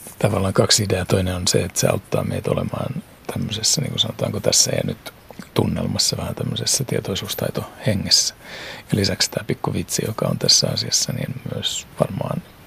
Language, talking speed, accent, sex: Finnish, 160 wpm, native, male